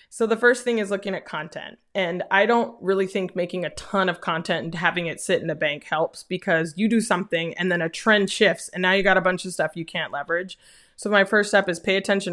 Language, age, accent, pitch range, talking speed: English, 20-39, American, 180-220 Hz, 260 wpm